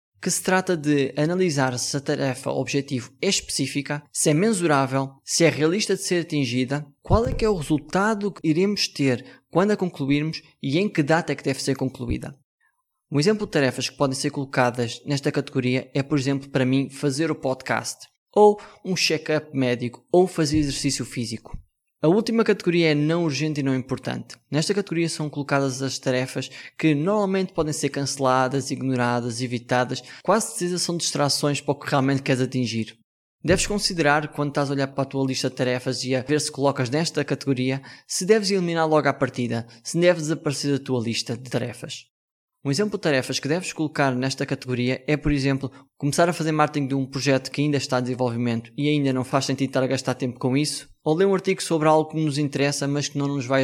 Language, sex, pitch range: Portuguese, male, 130-160 Hz